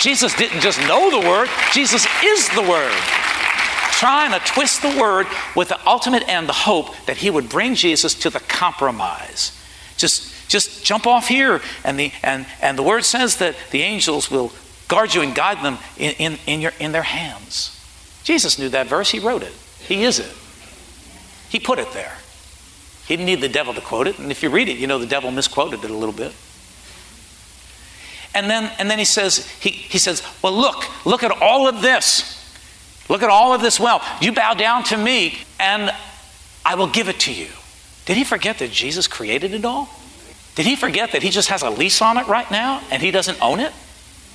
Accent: American